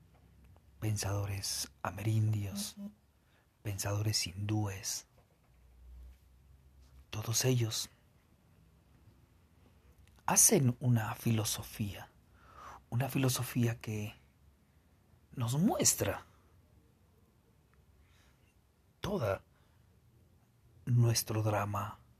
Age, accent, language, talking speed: 50-69, Mexican, Spanish, 45 wpm